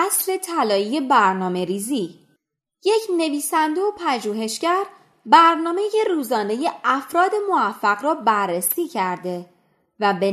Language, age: Persian, 20-39